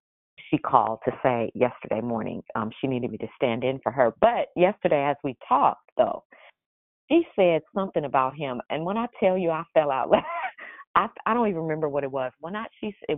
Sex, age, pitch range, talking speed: female, 40-59, 125-180 Hz, 215 wpm